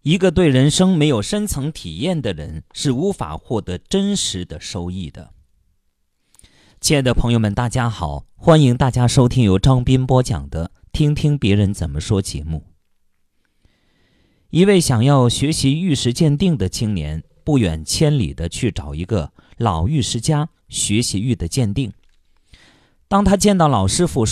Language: Chinese